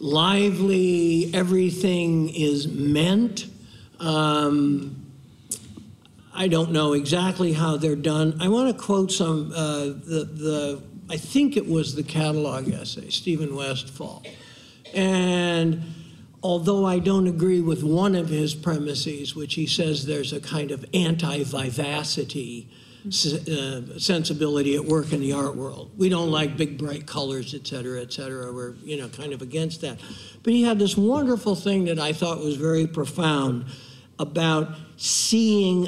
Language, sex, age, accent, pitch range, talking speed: English, male, 60-79, American, 145-175 Hz, 145 wpm